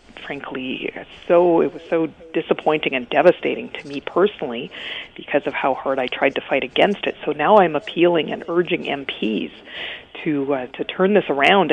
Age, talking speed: 40-59, 175 wpm